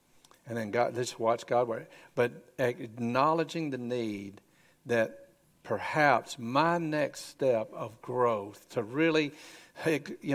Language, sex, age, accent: English, male, 60-79, American